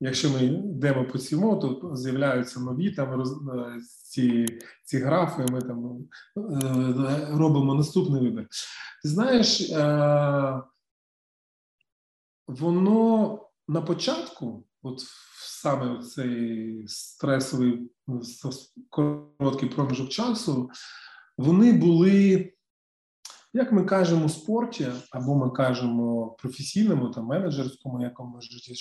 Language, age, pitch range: Ukrainian, 20-39, 125-150 Hz